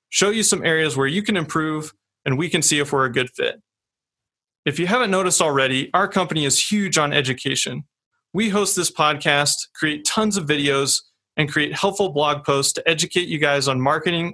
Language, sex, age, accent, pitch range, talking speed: English, male, 30-49, American, 130-170 Hz, 195 wpm